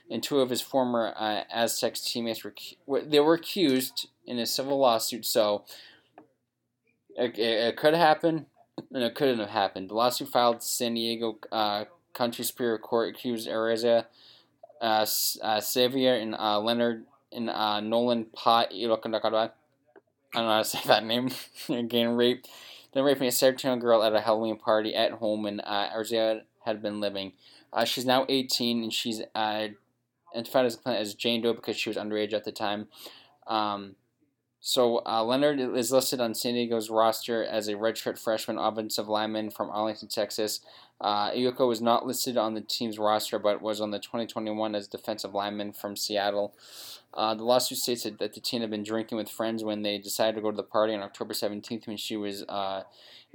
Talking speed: 180 wpm